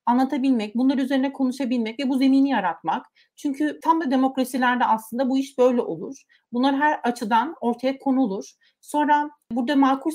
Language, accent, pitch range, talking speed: Turkish, native, 230-280 Hz, 150 wpm